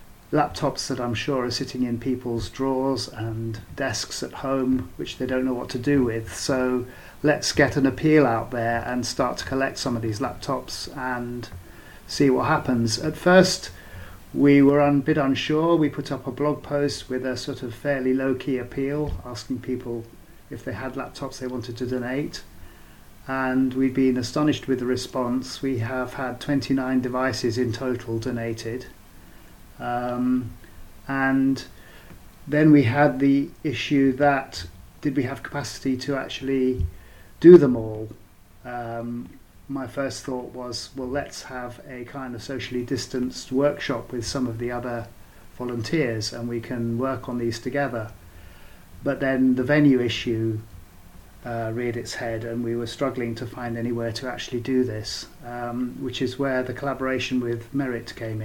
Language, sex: English, male